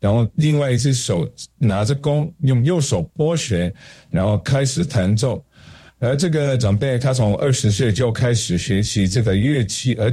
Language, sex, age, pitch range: Chinese, male, 50-69, 100-135 Hz